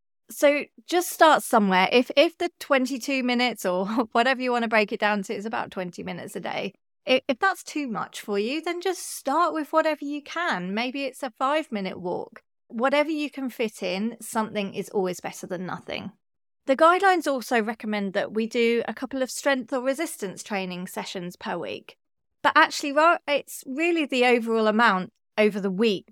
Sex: female